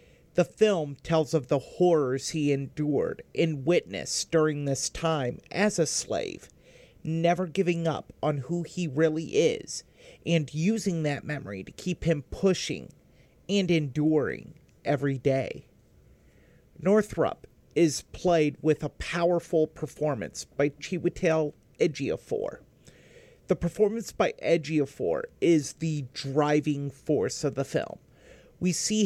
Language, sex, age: English, male, 40-59